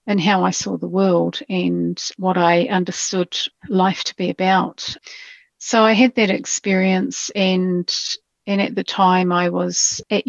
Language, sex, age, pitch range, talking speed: English, female, 40-59, 175-205 Hz, 155 wpm